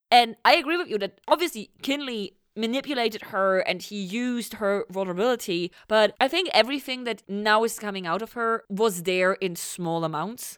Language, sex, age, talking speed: English, female, 20-39, 175 wpm